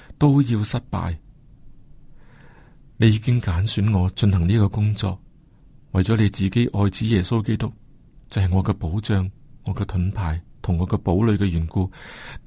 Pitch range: 100-135 Hz